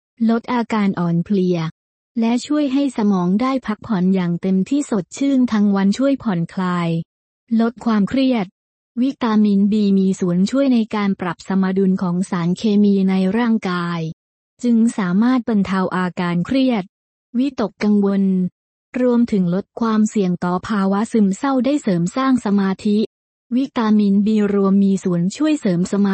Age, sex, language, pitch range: 20-39, female, Urdu, 190-235 Hz